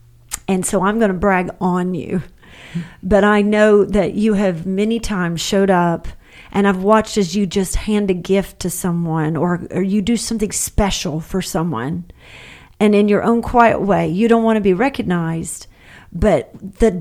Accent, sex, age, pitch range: American, female, 40-59, 175-215 Hz